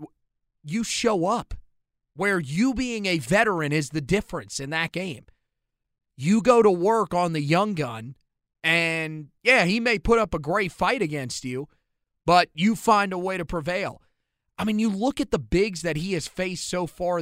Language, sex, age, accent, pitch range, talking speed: English, male, 30-49, American, 160-220 Hz, 185 wpm